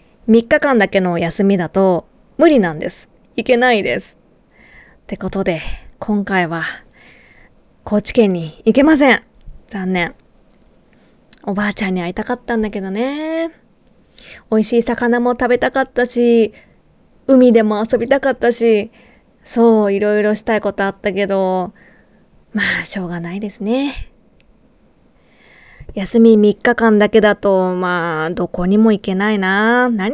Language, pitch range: Japanese, 195-245 Hz